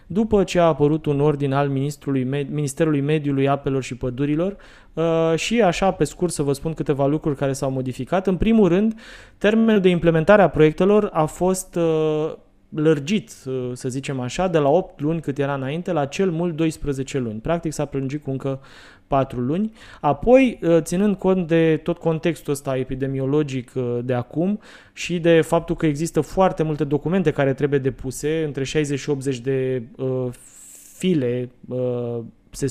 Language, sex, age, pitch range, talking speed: Romanian, male, 20-39, 140-175 Hz, 160 wpm